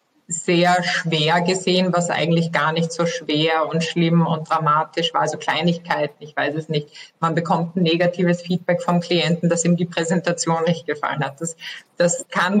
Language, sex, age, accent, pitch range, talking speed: German, female, 20-39, German, 165-185 Hz, 175 wpm